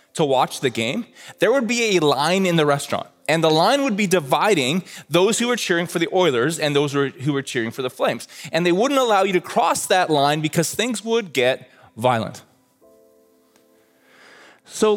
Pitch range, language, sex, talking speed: 120-175 Hz, English, male, 195 wpm